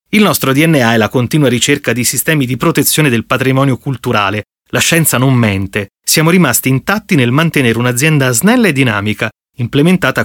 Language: Italian